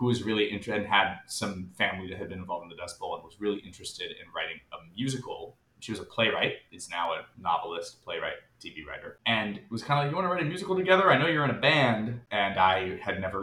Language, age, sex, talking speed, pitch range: English, 20-39, male, 255 wpm, 105-130 Hz